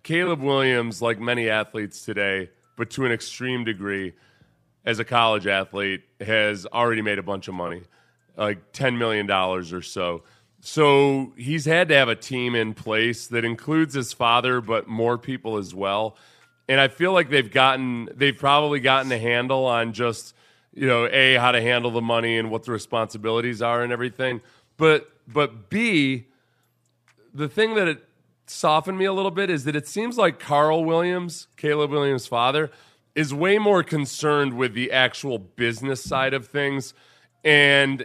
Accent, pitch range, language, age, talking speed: American, 115-150 Hz, English, 30-49, 170 wpm